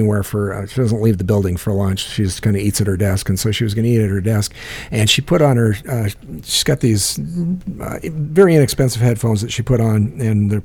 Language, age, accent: English, 50-69, American